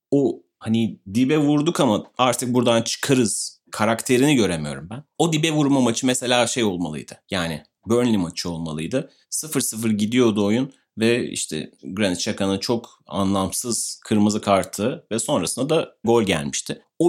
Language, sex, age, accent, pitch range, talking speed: Turkish, male, 30-49, native, 100-130 Hz, 135 wpm